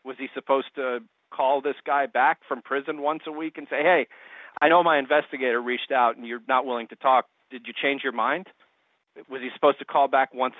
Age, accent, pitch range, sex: 40-59, American, 125-160 Hz, male